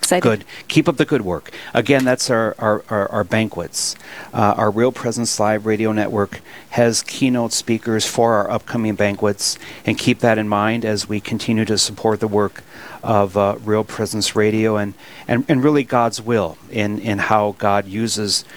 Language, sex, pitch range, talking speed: English, male, 105-130 Hz, 180 wpm